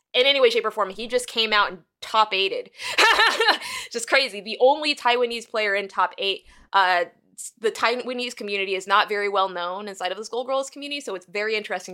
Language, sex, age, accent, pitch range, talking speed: English, female, 20-39, American, 195-250 Hz, 190 wpm